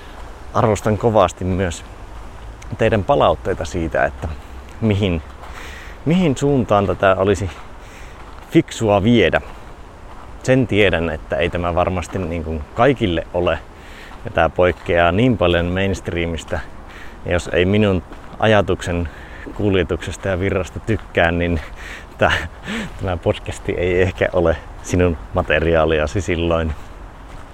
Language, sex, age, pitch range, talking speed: Finnish, male, 30-49, 80-105 Hz, 100 wpm